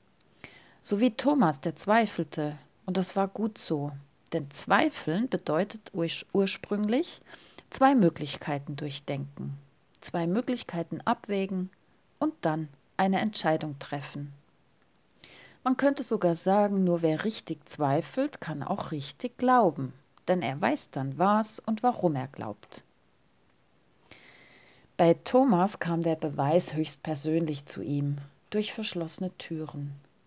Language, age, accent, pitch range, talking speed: German, 40-59, German, 150-205 Hz, 115 wpm